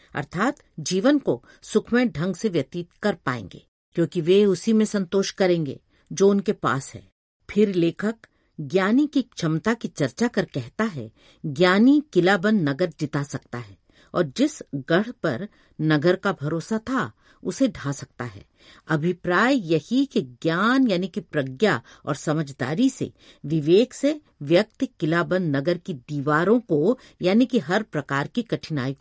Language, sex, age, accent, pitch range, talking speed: Hindi, female, 50-69, native, 150-210 Hz, 145 wpm